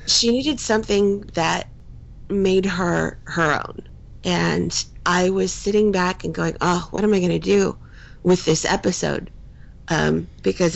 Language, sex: English, female